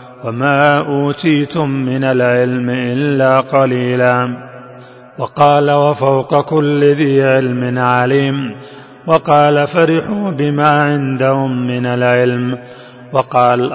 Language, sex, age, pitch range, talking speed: Arabic, male, 30-49, 125-145 Hz, 85 wpm